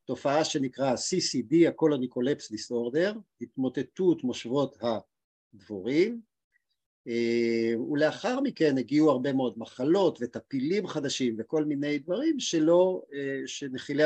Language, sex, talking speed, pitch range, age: Hebrew, male, 90 wpm, 125-160 Hz, 50-69